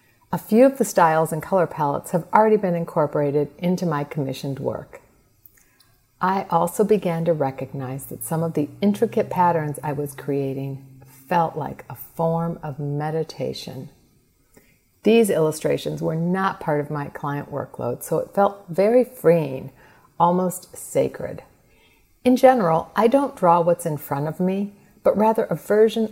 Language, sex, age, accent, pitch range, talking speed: English, female, 50-69, American, 145-195 Hz, 150 wpm